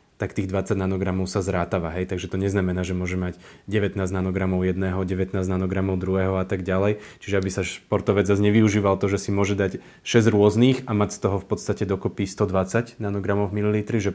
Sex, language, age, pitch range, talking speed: male, Slovak, 30-49, 95-105 Hz, 195 wpm